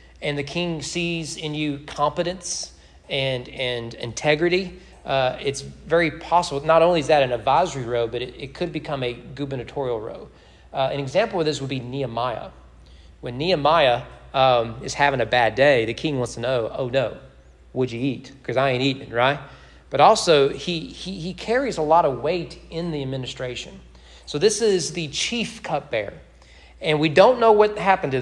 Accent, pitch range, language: American, 120-160 Hz, English